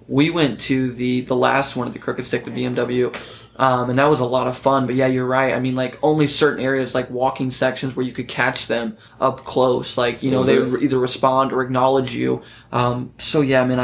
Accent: American